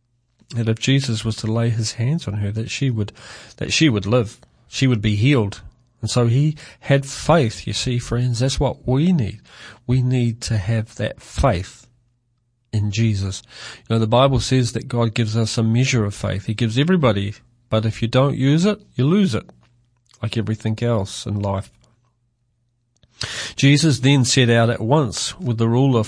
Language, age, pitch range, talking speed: English, 40-59, 110-130 Hz, 185 wpm